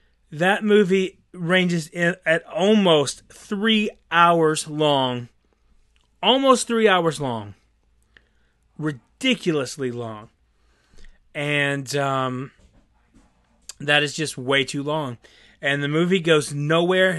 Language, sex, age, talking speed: English, male, 30-49, 100 wpm